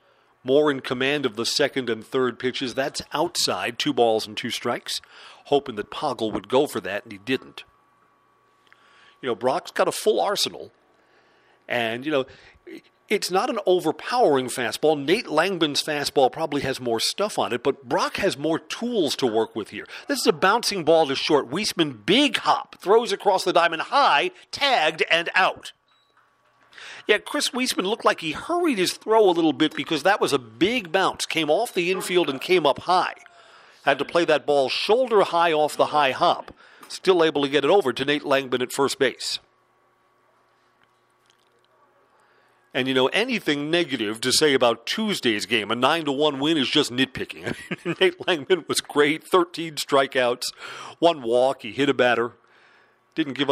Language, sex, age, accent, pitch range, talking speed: English, male, 40-59, American, 130-185 Hz, 180 wpm